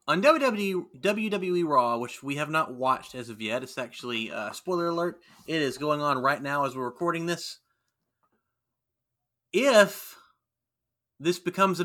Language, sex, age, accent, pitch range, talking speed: English, male, 30-49, American, 130-215 Hz, 160 wpm